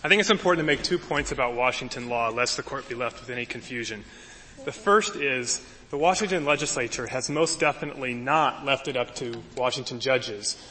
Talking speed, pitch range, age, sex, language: 195 wpm, 125-150 Hz, 30-49, male, English